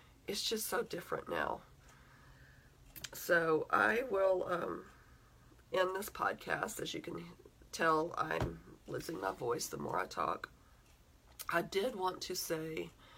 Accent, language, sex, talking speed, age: American, English, female, 130 wpm, 40-59